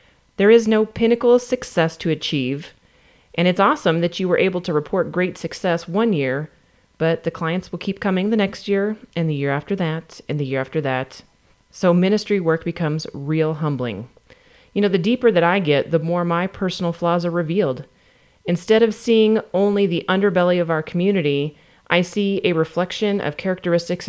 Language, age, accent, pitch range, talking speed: English, 30-49, American, 160-205 Hz, 185 wpm